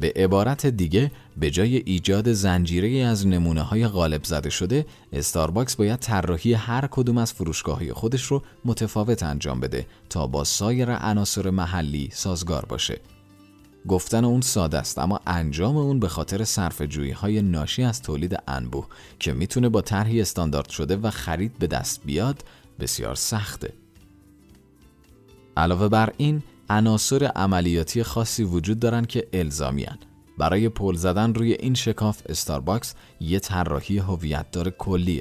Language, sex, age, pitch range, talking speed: Persian, male, 40-59, 85-115 Hz, 140 wpm